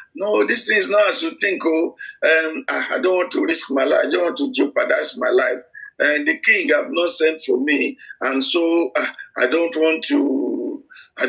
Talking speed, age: 215 wpm, 50-69